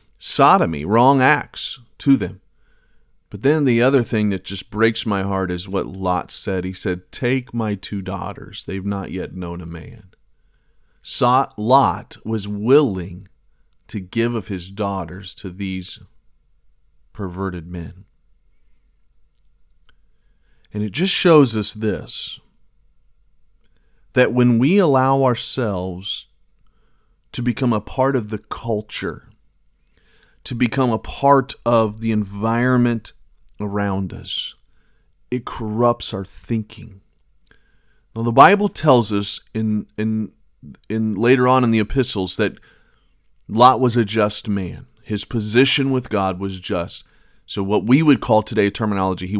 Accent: American